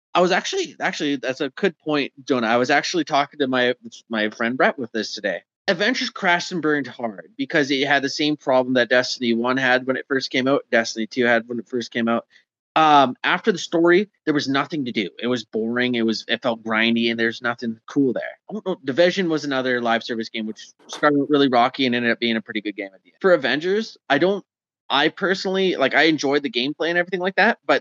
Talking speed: 225 wpm